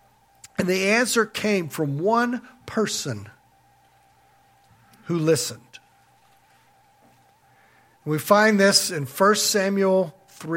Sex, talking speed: male, 90 wpm